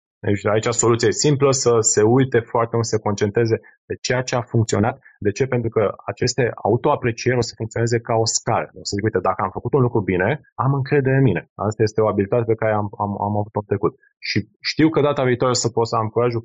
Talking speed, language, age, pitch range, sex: 245 wpm, Romanian, 20-39, 105-125 Hz, male